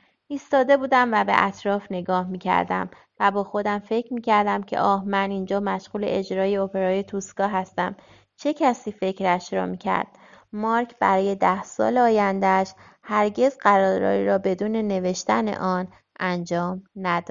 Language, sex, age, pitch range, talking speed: Persian, female, 30-49, 175-220 Hz, 135 wpm